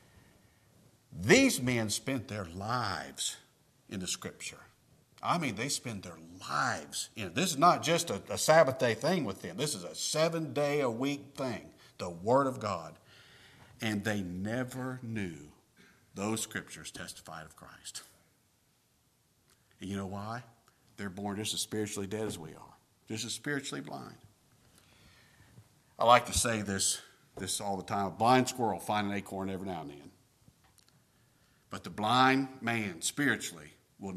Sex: male